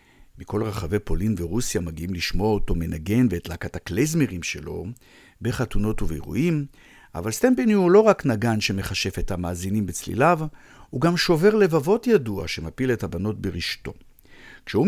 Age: 50-69